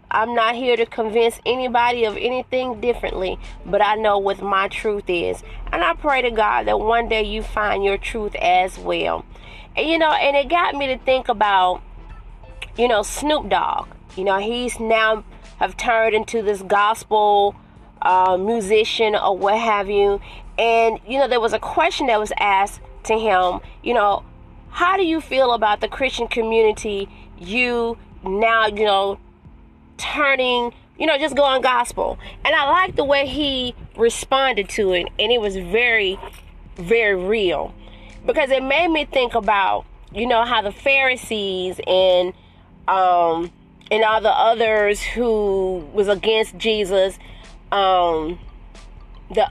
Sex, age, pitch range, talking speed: female, 30-49, 200-250 Hz, 155 wpm